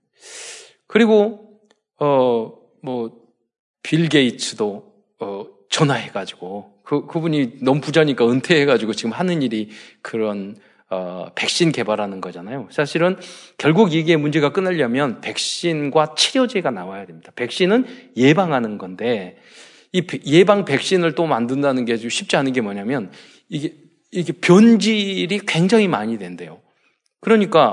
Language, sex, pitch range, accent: Korean, male, 140-215 Hz, native